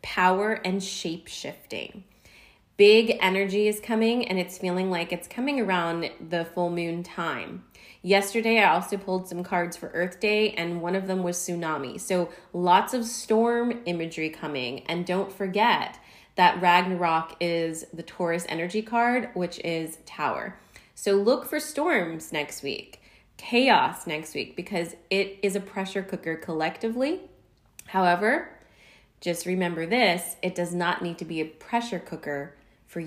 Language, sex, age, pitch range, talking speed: English, female, 20-39, 170-205 Hz, 150 wpm